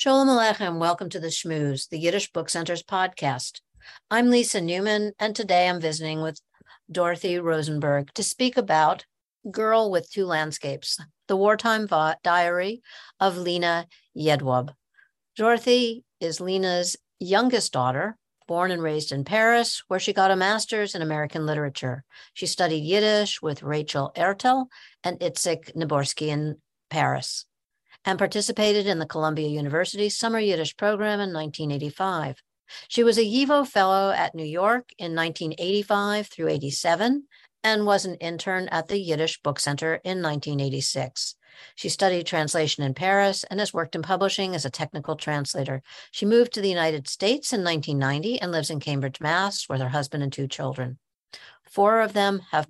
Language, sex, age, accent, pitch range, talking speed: English, female, 60-79, American, 155-210 Hz, 155 wpm